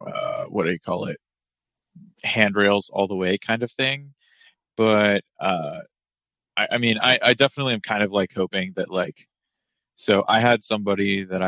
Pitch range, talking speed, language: 95-115 Hz, 175 wpm, English